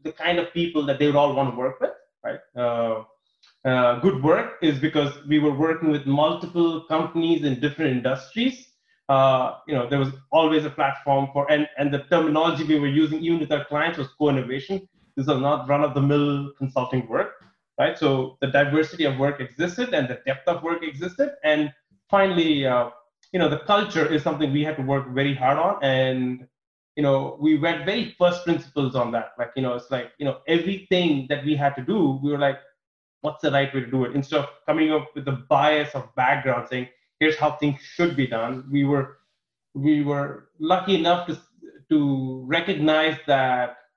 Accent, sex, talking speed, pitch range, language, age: Indian, male, 200 wpm, 135-165 Hz, English, 20-39